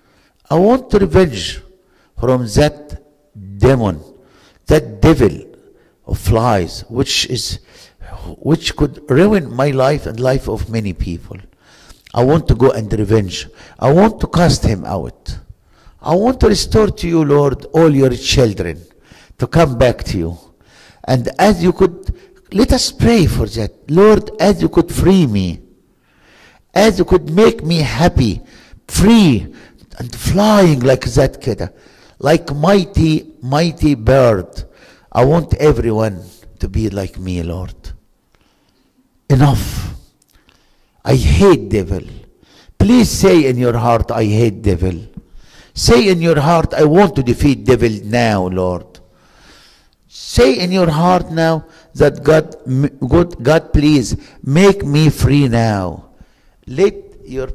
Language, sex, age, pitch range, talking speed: English, male, 60-79, 110-160 Hz, 130 wpm